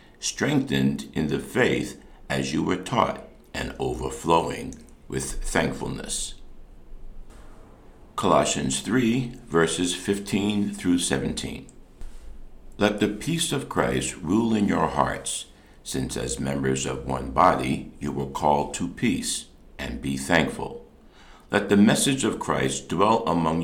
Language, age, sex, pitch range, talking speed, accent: English, 60-79, male, 65-85 Hz, 120 wpm, American